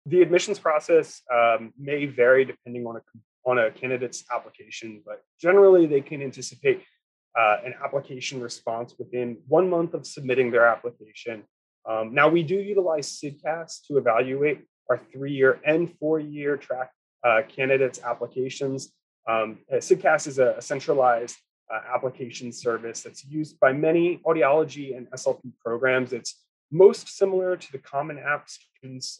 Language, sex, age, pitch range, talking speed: English, male, 30-49, 120-155 Hz, 140 wpm